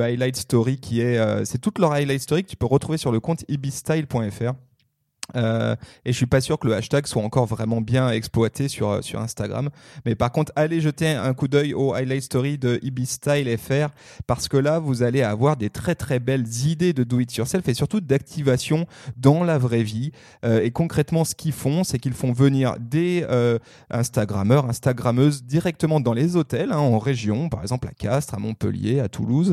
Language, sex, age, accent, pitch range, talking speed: French, male, 30-49, French, 115-145 Hz, 205 wpm